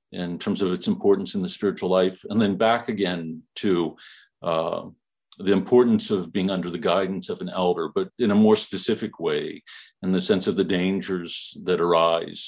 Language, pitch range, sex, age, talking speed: English, 95-145 Hz, male, 50-69, 190 wpm